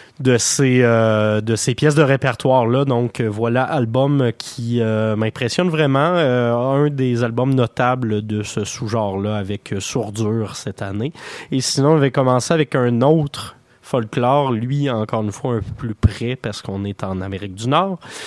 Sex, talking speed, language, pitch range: male, 170 wpm, French, 110-140 Hz